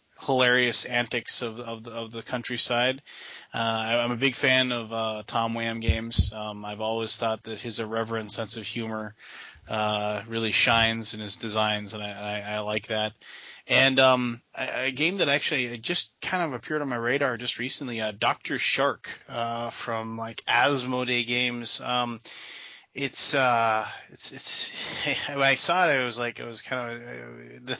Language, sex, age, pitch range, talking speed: English, male, 30-49, 110-120 Hz, 175 wpm